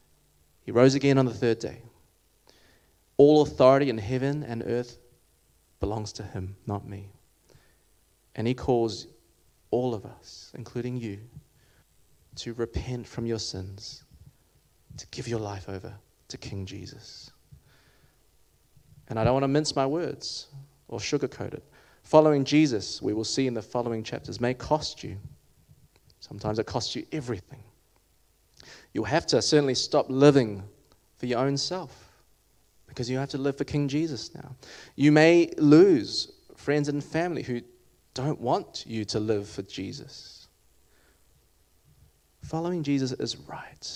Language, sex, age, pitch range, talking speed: English, male, 20-39, 105-140 Hz, 140 wpm